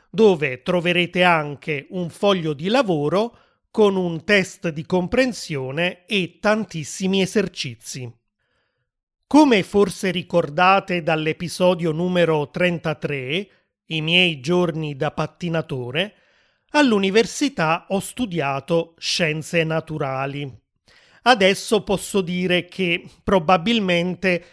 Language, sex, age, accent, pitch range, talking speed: Italian, male, 30-49, native, 160-195 Hz, 90 wpm